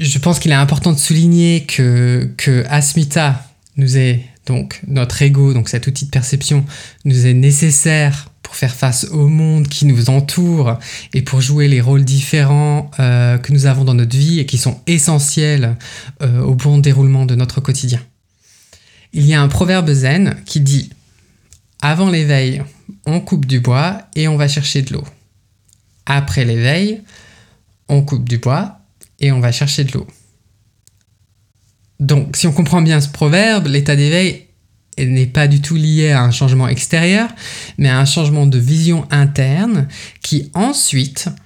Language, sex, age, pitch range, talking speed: French, male, 20-39, 125-150 Hz, 165 wpm